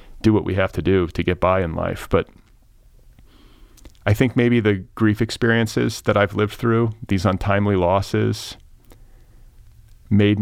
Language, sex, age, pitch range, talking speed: English, male, 40-59, 90-115 Hz, 145 wpm